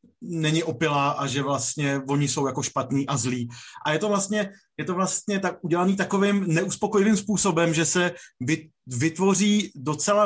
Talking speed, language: 160 wpm, Czech